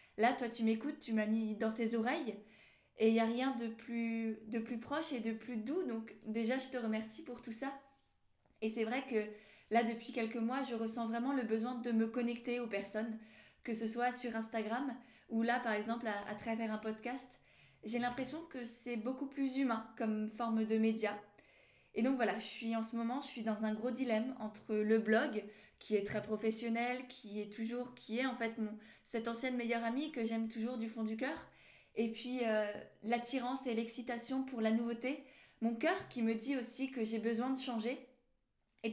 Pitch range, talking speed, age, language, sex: 220-250 Hz, 210 wpm, 20-39, French, female